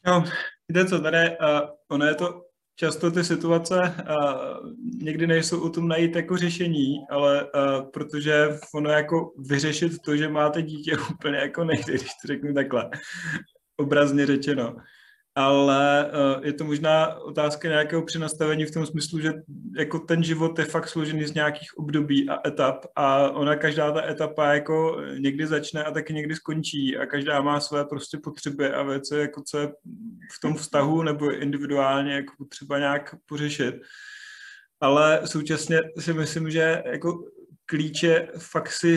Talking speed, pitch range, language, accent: 155 wpm, 145-160 Hz, Czech, native